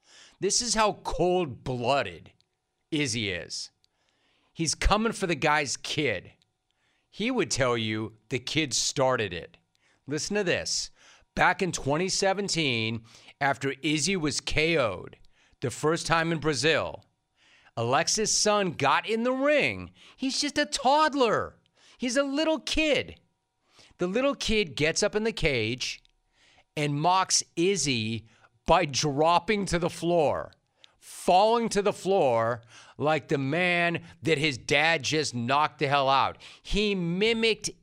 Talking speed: 130 wpm